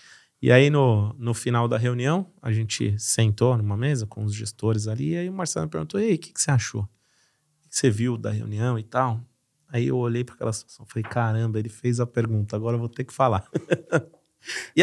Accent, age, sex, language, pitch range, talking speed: Brazilian, 30-49, male, Portuguese, 110-135 Hz, 225 wpm